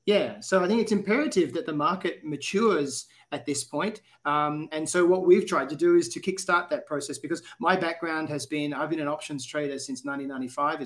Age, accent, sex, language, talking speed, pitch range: 30-49, Australian, male, English, 210 wpm, 145-190 Hz